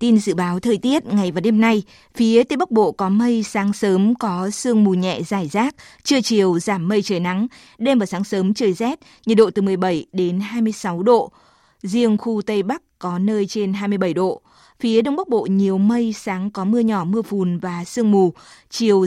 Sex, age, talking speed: female, 20-39, 210 wpm